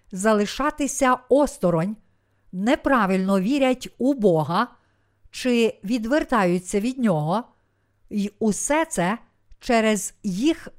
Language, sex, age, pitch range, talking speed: Ukrainian, female, 50-69, 160-255 Hz, 85 wpm